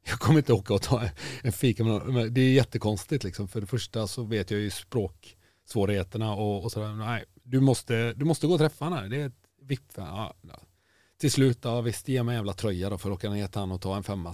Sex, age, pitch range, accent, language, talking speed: male, 30-49, 105-145 Hz, native, Swedish, 240 wpm